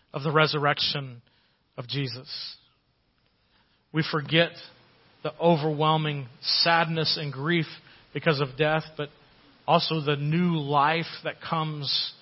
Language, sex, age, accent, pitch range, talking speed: English, male, 40-59, American, 155-185 Hz, 110 wpm